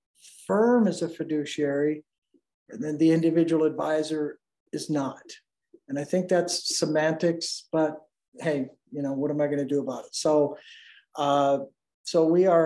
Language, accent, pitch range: English, American, 145-180 Hz